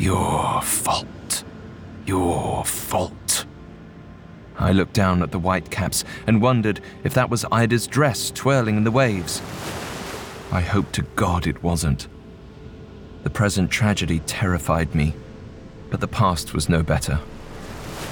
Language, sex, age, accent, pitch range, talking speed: English, male, 30-49, British, 95-120 Hz, 125 wpm